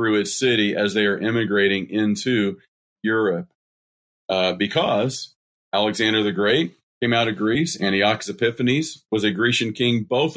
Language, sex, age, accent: English, male, 40-59, American